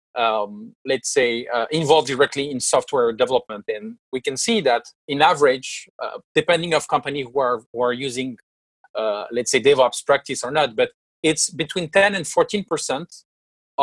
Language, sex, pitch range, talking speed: English, male, 130-185 Hz, 165 wpm